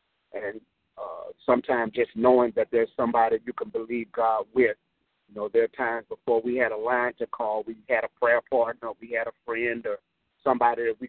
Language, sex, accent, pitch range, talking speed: English, male, American, 115-180 Hz, 205 wpm